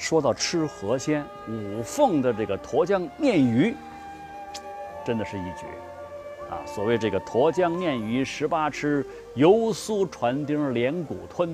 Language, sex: Chinese, male